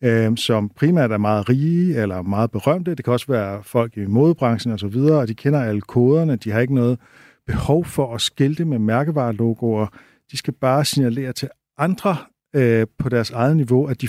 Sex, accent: male, native